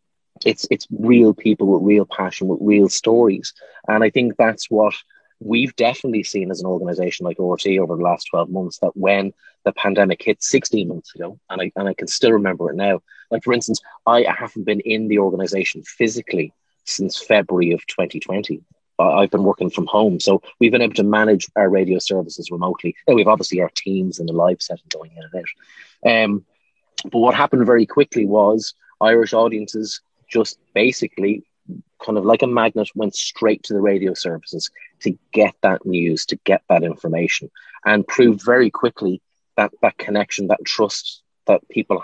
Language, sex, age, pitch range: English, male, 30-49, 95-120 Hz